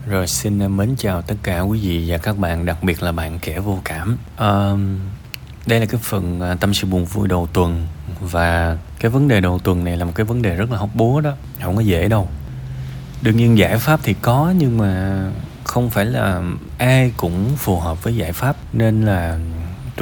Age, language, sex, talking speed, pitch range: 20-39, Vietnamese, male, 210 wpm, 85-110 Hz